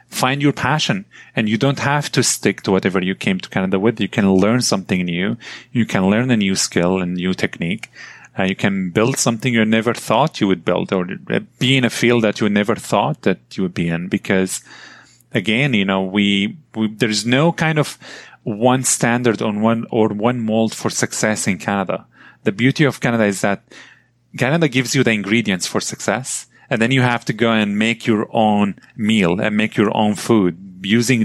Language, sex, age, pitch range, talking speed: English, male, 30-49, 95-120 Hz, 205 wpm